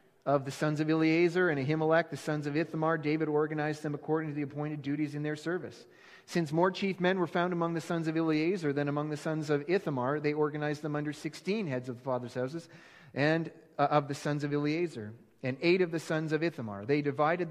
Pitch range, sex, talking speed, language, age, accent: 140-160 Hz, male, 220 wpm, English, 30-49, American